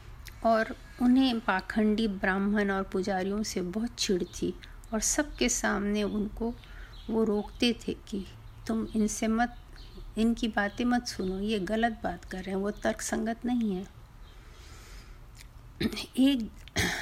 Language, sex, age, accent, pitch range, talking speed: Hindi, female, 50-69, native, 200-245 Hz, 125 wpm